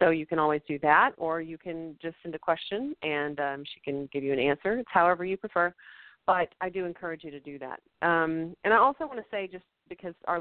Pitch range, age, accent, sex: 160-190 Hz, 40-59, American, female